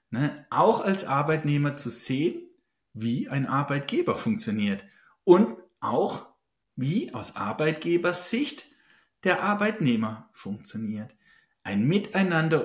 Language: German